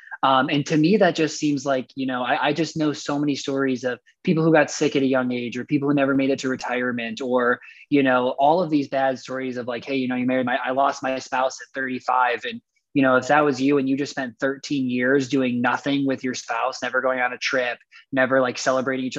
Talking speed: 260 wpm